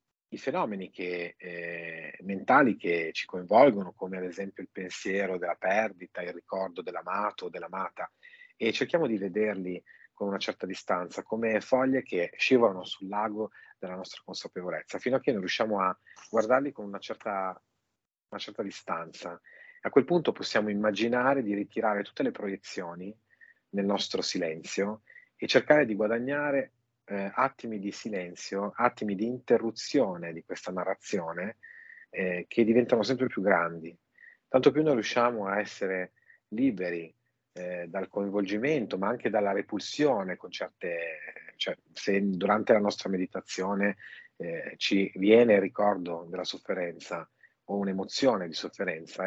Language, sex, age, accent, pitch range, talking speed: Italian, male, 30-49, native, 95-120 Hz, 140 wpm